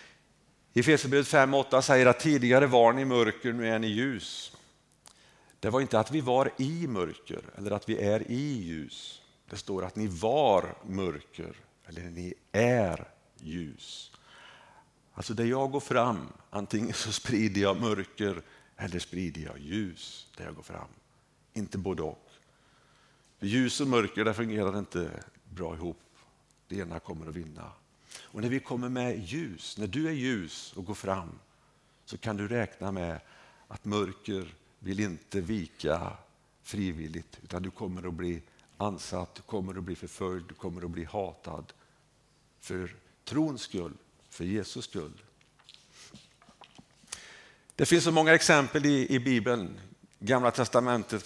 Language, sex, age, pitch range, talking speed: Swedish, male, 50-69, 95-125 Hz, 150 wpm